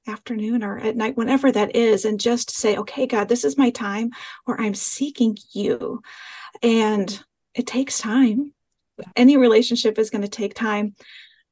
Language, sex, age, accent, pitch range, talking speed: English, female, 40-59, American, 210-255 Hz, 160 wpm